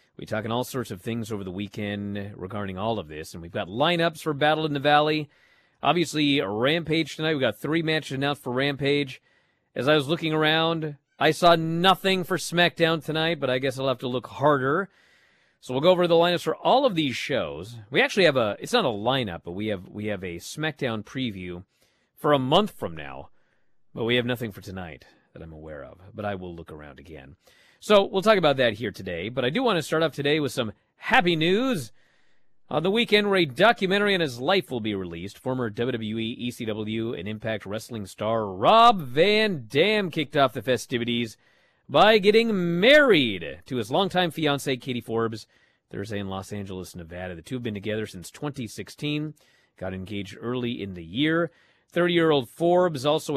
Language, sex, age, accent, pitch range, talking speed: English, male, 40-59, American, 105-160 Hz, 195 wpm